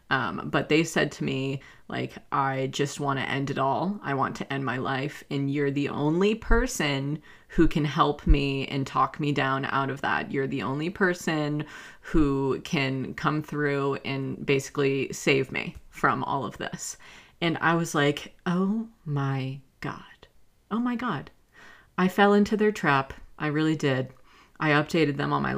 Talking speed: 175 wpm